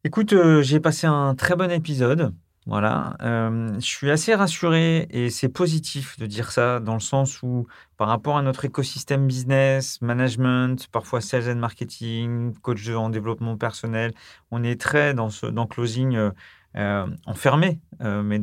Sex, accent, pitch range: male, French, 110-140 Hz